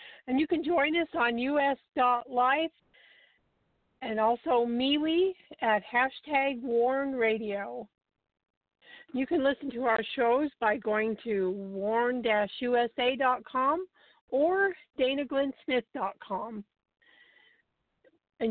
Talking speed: 90 wpm